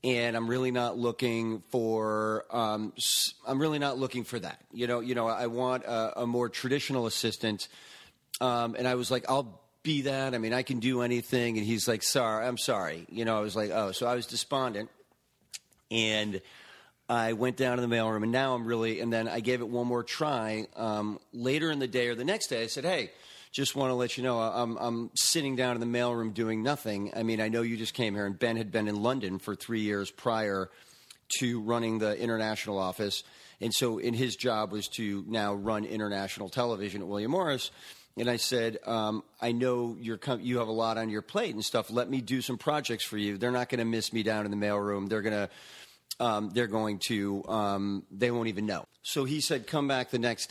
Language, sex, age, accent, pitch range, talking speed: English, male, 40-59, American, 110-125 Hz, 220 wpm